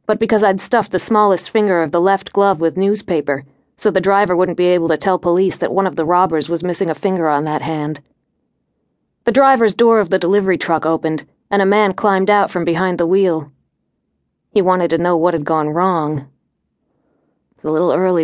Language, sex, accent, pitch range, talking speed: English, female, American, 165-210 Hz, 205 wpm